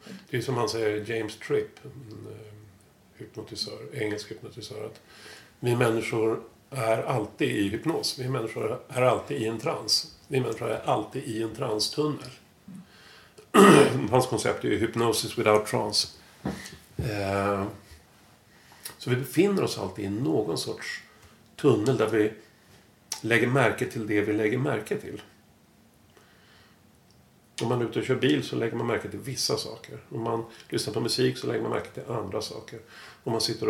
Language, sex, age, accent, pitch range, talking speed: English, male, 50-69, Swedish, 105-120 Hz, 155 wpm